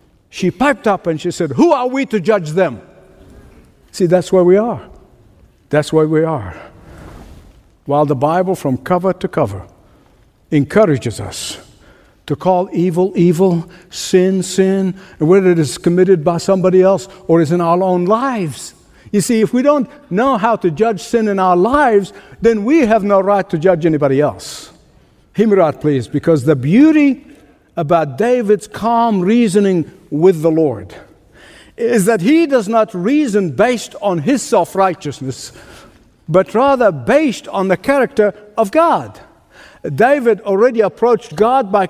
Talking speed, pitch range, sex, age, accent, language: 155 wpm, 170-225 Hz, male, 60-79, American, English